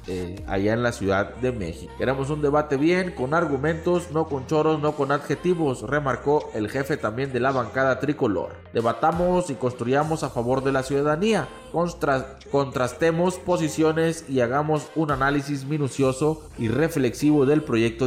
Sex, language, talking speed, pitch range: male, Spanish, 155 wpm, 115-150 Hz